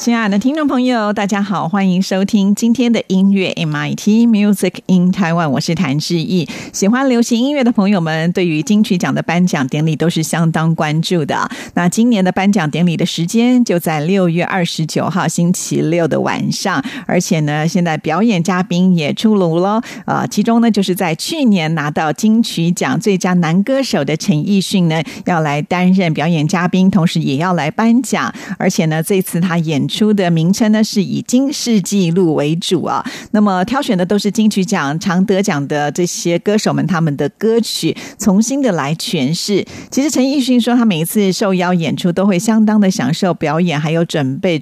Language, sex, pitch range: Chinese, female, 170-210 Hz